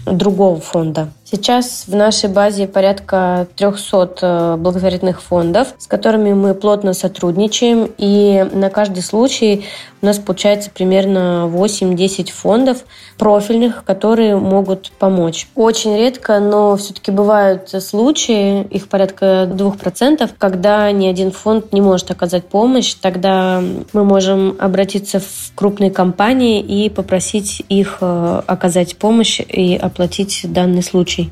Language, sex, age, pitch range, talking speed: Russian, female, 20-39, 185-210 Hz, 120 wpm